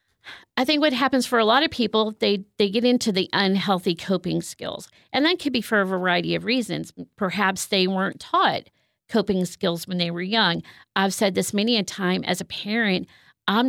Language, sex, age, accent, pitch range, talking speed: English, female, 40-59, American, 190-245 Hz, 200 wpm